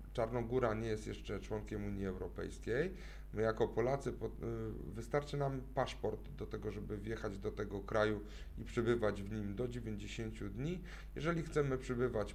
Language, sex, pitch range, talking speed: Polish, male, 105-125 Hz, 145 wpm